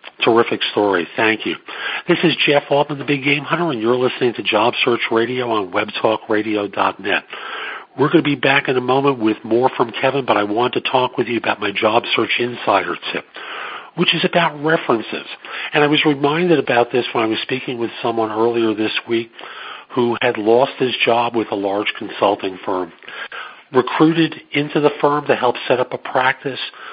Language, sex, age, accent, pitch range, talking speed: English, male, 50-69, American, 110-150 Hz, 190 wpm